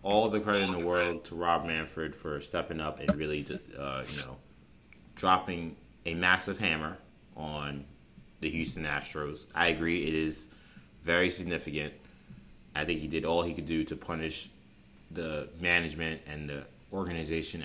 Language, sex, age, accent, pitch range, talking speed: English, male, 30-49, American, 80-100 Hz, 160 wpm